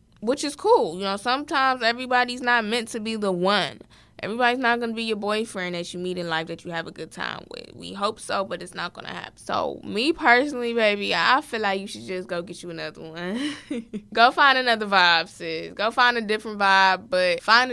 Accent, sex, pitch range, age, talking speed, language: American, female, 175-225 Hz, 20-39, 225 wpm, English